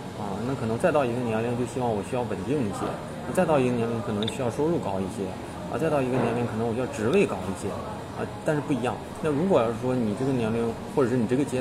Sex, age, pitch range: male, 20-39, 105-130 Hz